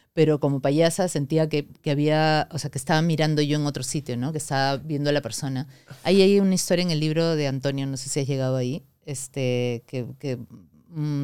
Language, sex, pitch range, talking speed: Spanish, female, 135-165 Hz, 225 wpm